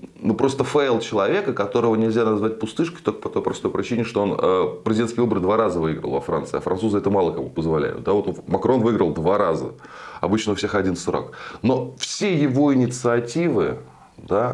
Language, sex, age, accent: Russian, male, 20-39, native